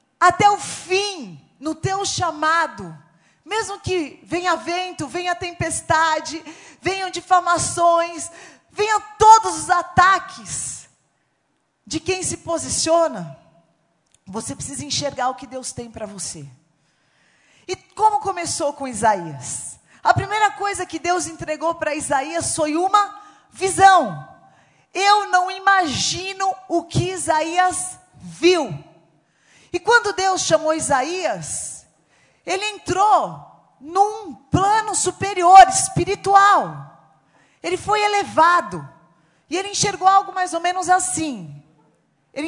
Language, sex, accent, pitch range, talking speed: Portuguese, female, Brazilian, 250-380 Hz, 110 wpm